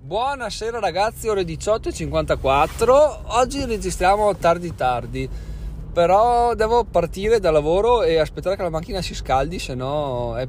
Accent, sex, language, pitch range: native, male, Italian, 120-155 Hz